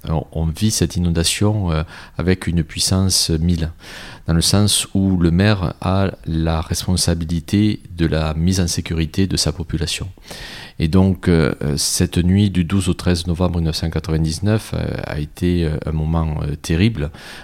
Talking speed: 140 wpm